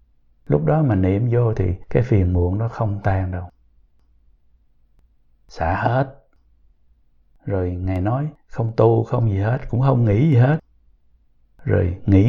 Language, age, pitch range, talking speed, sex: Vietnamese, 60-79, 80-120 Hz, 145 wpm, male